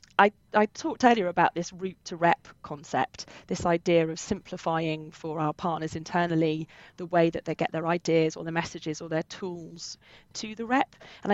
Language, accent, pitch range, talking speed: English, British, 160-190 Hz, 185 wpm